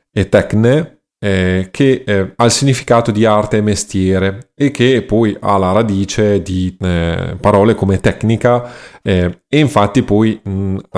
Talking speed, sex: 155 wpm, male